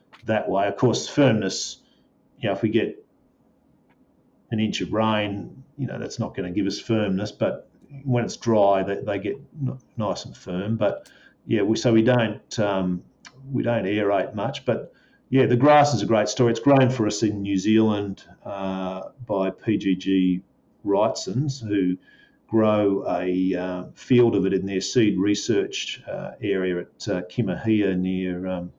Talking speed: 170 wpm